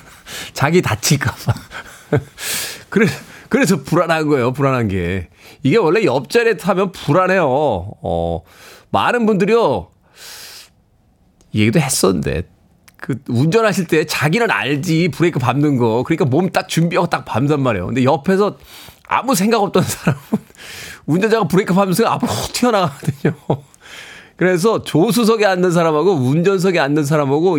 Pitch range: 125-170 Hz